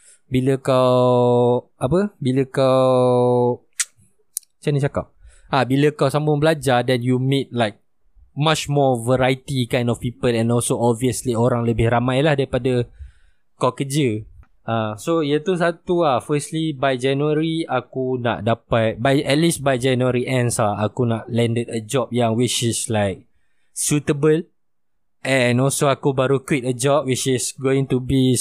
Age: 20-39